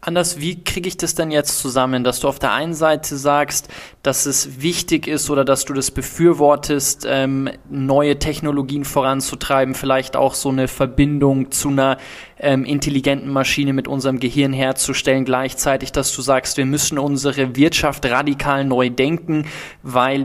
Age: 20-39